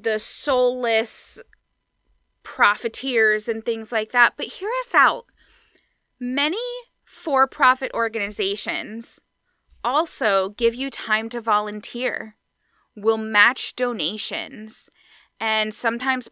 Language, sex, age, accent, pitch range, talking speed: English, female, 10-29, American, 215-275 Hz, 90 wpm